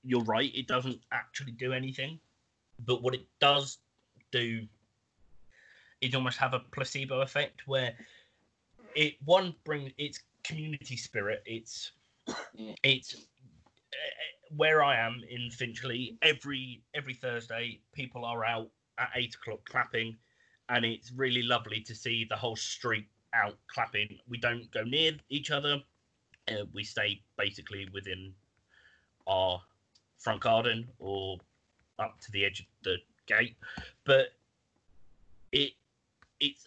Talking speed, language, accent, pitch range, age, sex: 125 wpm, English, British, 110-135 Hz, 30-49, male